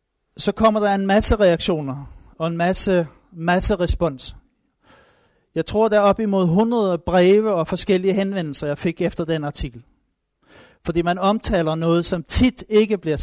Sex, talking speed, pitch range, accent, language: male, 160 wpm, 160-205 Hz, native, Danish